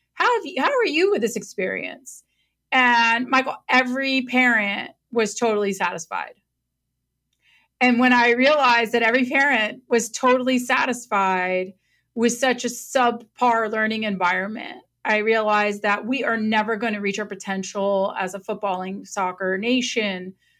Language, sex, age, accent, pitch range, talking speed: English, female, 30-49, American, 195-240 Hz, 140 wpm